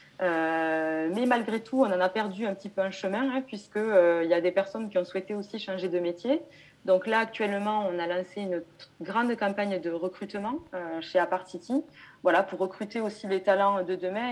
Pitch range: 175-230 Hz